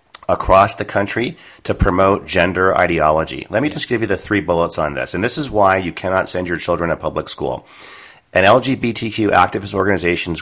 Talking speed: 190 wpm